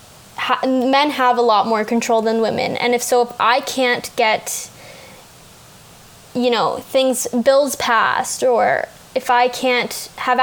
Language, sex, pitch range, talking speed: English, female, 225-255 Hz, 145 wpm